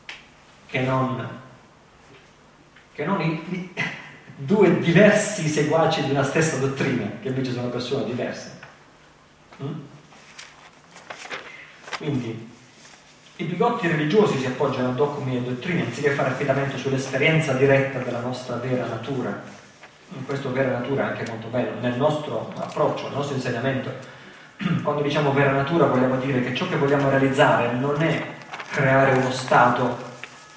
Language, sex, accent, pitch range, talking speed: Italian, male, native, 125-155 Hz, 130 wpm